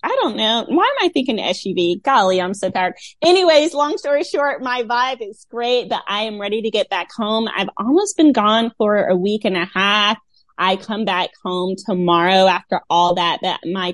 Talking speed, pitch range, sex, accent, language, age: 205 wpm, 210-285 Hz, female, American, English, 20-39